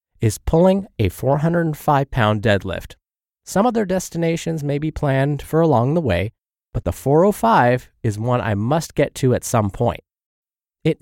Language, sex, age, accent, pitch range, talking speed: English, male, 20-39, American, 110-160 Hz, 150 wpm